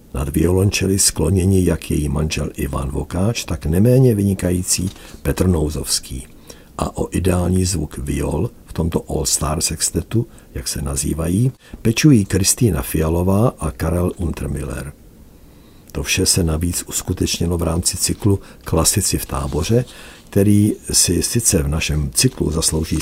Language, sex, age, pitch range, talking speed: Czech, male, 60-79, 75-100 Hz, 130 wpm